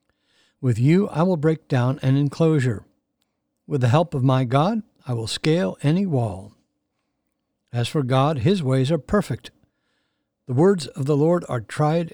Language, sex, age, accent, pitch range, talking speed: English, male, 60-79, American, 125-170 Hz, 165 wpm